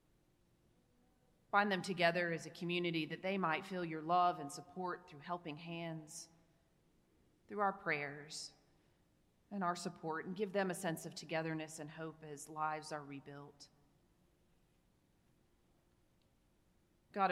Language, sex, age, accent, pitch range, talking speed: English, female, 30-49, American, 155-185 Hz, 130 wpm